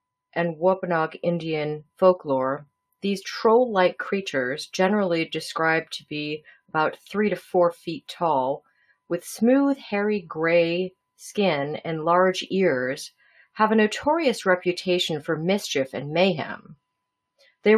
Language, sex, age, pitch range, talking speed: English, female, 40-59, 155-200 Hz, 115 wpm